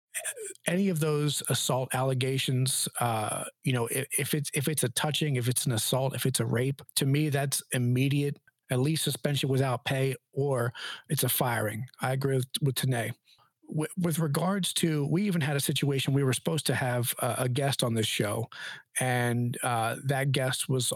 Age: 40-59